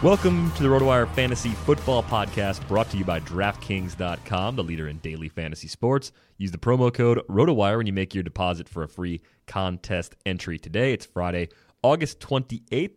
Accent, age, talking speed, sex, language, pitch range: American, 30-49, 175 wpm, male, English, 90-115 Hz